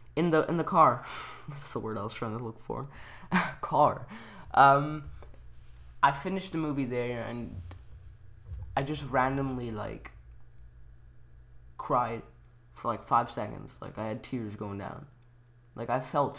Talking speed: 145 wpm